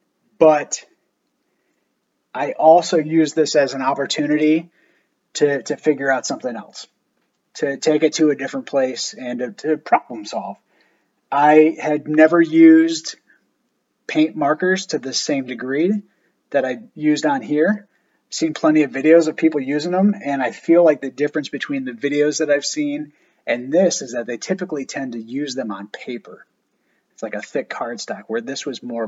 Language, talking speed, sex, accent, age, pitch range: English, 170 wpm, male, American, 30-49, 135-180 Hz